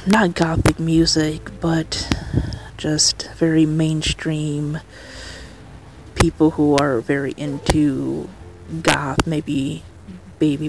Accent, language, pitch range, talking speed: American, English, 120-165 Hz, 85 wpm